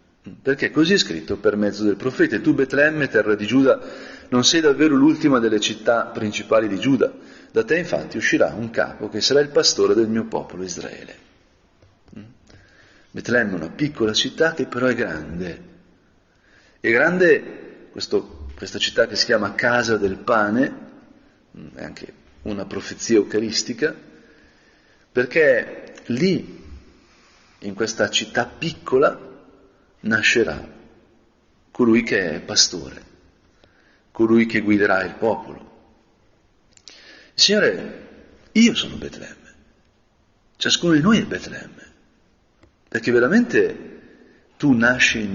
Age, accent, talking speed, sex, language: 40-59, native, 120 wpm, male, Italian